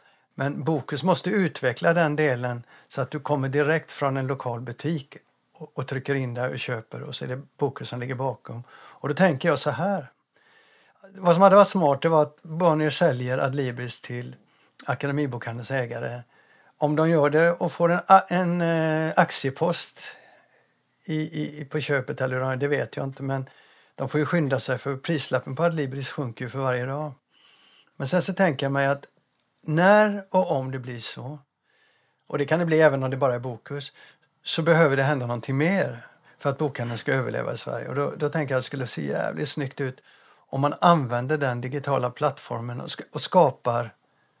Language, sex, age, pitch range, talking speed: Swedish, male, 60-79, 130-155 Hz, 195 wpm